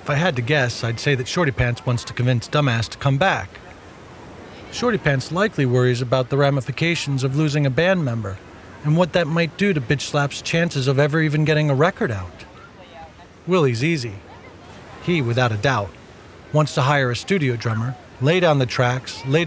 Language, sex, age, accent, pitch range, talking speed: English, male, 40-59, American, 120-155 Hz, 190 wpm